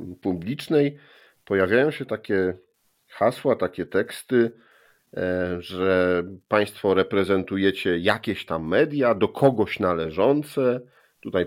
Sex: male